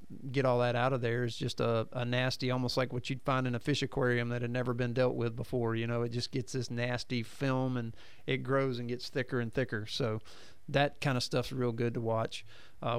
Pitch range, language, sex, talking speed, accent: 120-135 Hz, English, male, 245 wpm, American